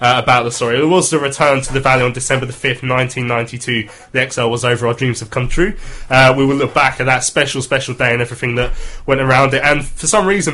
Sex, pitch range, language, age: male, 125-140 Hz, English, 20-39